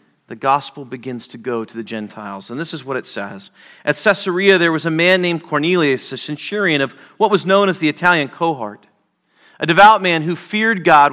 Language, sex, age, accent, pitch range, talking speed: English, male, 40-59, American, 145-190 Hz, 205 wpm